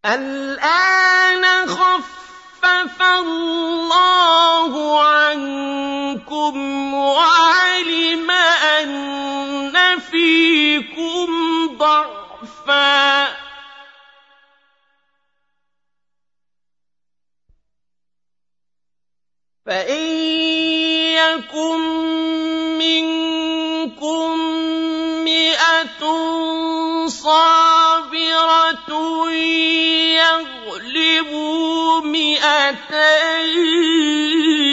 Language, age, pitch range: Arabic, 40-59, 280-325 Hz